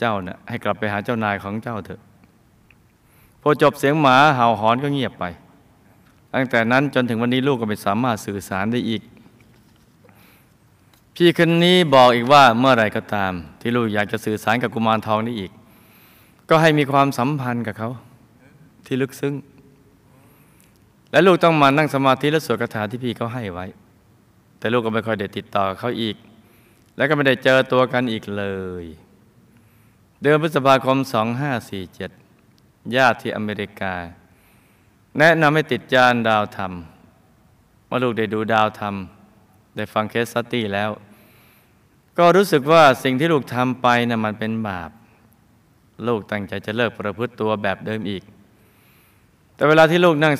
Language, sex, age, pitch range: Thai, male, 20-39, 105-130 Hz